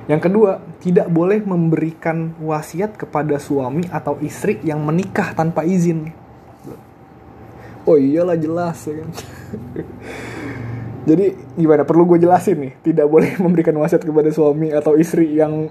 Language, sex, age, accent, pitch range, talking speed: English, male, 20-39, Indonesian, 150-170 Hz, 120 wpm